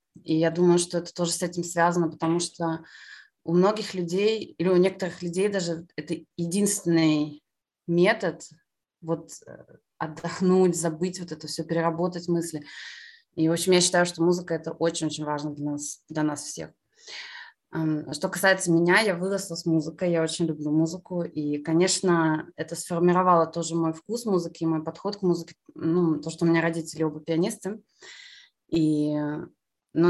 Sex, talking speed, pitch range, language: female, 155 wpm, 160-180 Hz, Russian